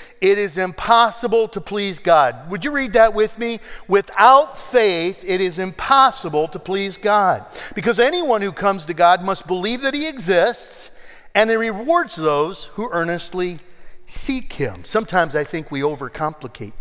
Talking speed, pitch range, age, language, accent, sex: 155 wpm, 135-200 Hz, 50-69, English, American, male